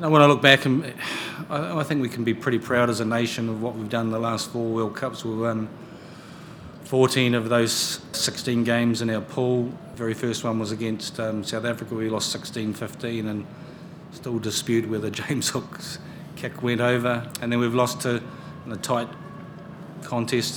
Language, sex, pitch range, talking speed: English, male, 110-125 Hz, 185 wpm